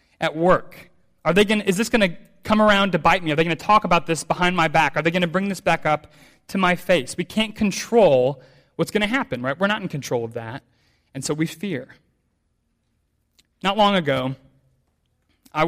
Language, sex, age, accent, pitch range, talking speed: English, male, 30-49, American, 145-195 Hz, 220 wpm